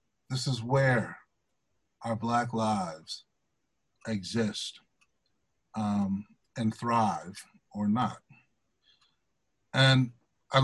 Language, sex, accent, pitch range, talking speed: English, male, American, 115-140 Hz, 80 wpm